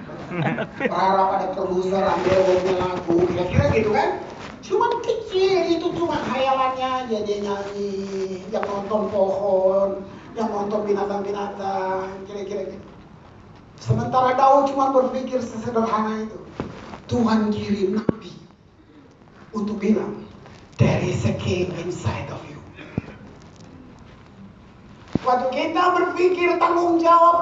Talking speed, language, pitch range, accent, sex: 105 wpm, Indonesian, 200-305 Hz, native, male